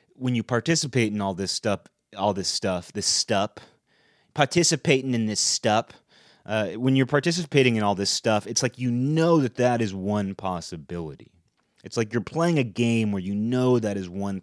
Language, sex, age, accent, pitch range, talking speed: English, male, 30-49, American, 95-120 Hz, 185 wpm